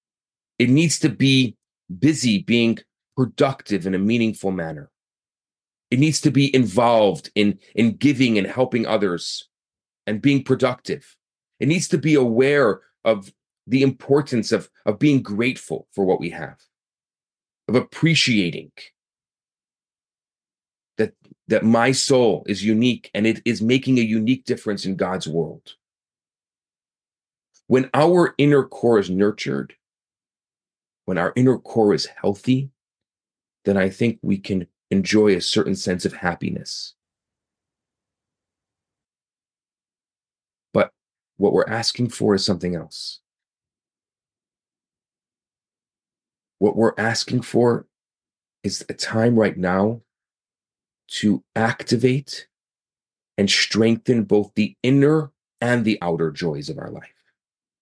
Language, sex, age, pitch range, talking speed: English, male, 30-49, 105-130 Hz, 115 wpm